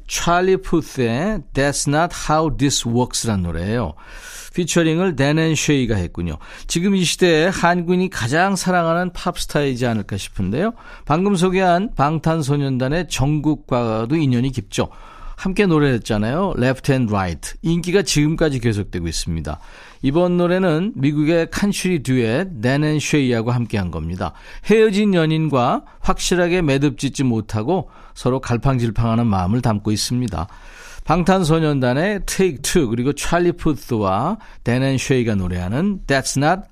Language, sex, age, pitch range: Korean, male, 40-59, 120-175 Hz